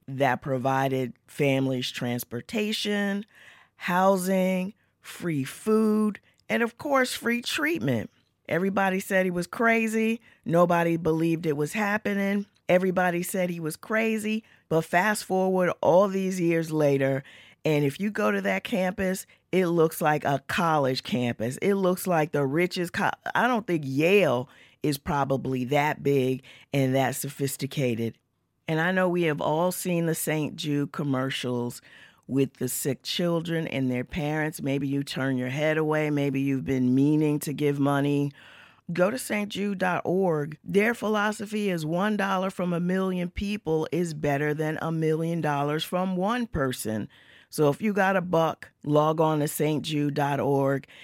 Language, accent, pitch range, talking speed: English, American, 140-190 Hz, 145 wpm